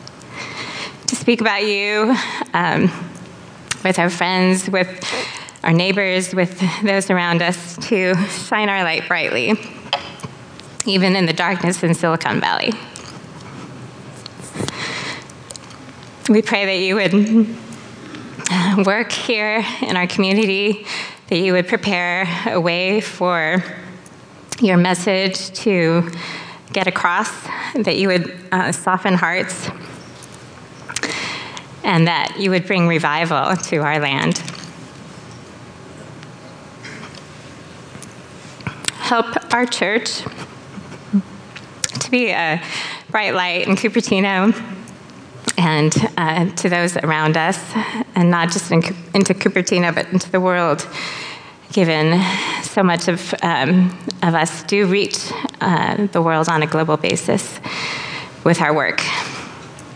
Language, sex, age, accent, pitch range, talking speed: English, female, 20-39, American, 170-205 Hz, 105 wpm